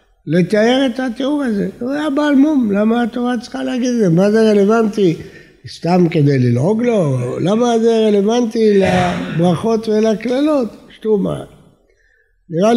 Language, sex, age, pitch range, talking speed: Hebrew, male, 60-79, 160-235 Hz, 130 wpm